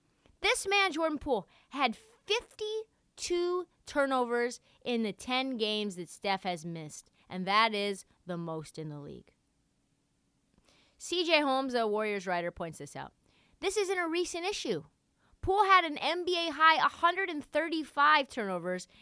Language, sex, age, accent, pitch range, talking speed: English, female, 30-49, American, 210-320 Hz, 135 wpm